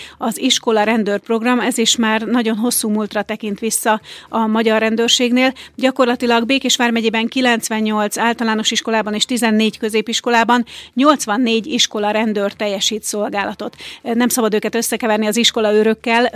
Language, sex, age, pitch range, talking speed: Hungarian, female, 30-49, 215-235 Hz, 130 wpm